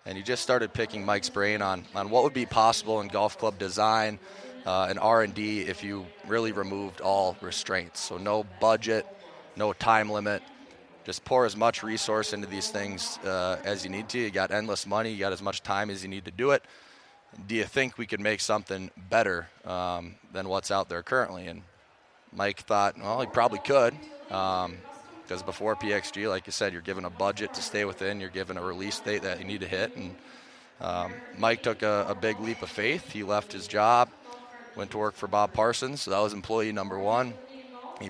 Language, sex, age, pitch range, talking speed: English, male, 20-39, 95-110 Hz, 210 wpm